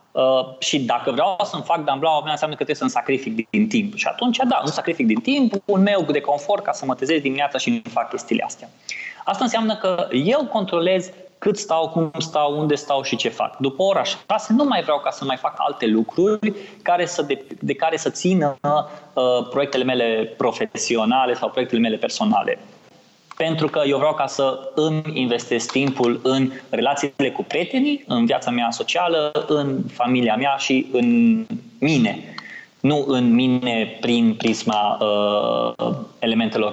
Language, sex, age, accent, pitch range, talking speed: Romanian, male, 20-39, native, 130-190 Hz, 175 wpm